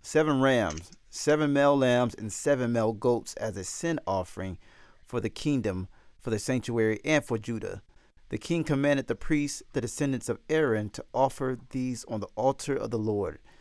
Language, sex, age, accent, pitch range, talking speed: English, male, 40-59, American, 105-130 Hz, 175 wpm